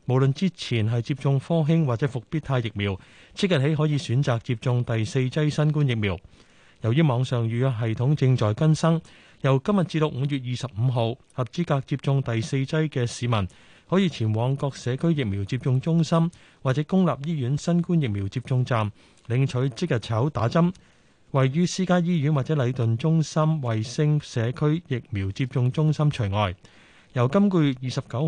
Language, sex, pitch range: Chinese, male, 115-155 Hz